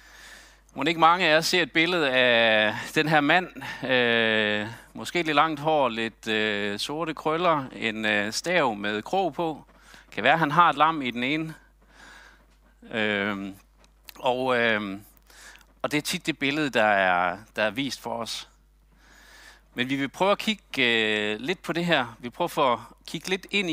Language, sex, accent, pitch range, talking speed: Danish, male, native, 115-160 Hz, 175 wpm